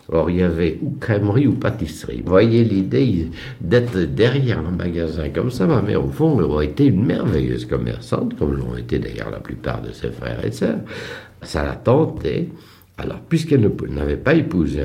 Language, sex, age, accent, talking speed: French, male, 60-79, French, 185 wpm